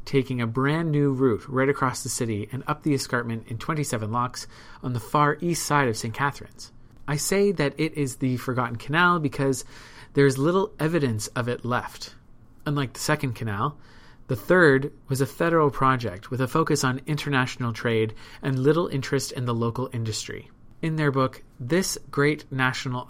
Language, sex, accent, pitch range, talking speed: English, male, American, 120-145 Hz, 180 wpm